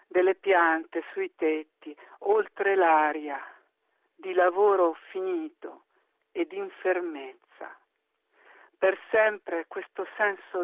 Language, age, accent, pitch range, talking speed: Italian, 50-69, native, 170-220 Hz, 90 wpm